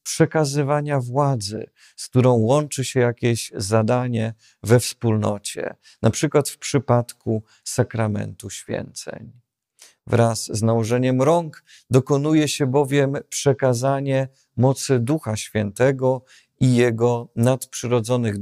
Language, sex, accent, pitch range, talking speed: Polish, male, native, 115-135 Hz, 100 wpm